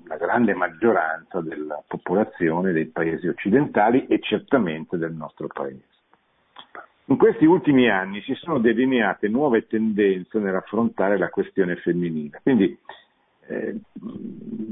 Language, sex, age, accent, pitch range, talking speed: Italian, male, 50-69, native, 90-125 Hz, 120 wpm